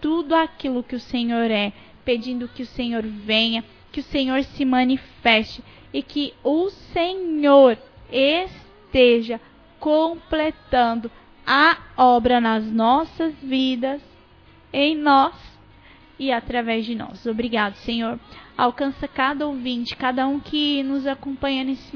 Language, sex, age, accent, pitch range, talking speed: Portuguese, female, 10-29, Brazilian, 245-285 Hz, 120 wpm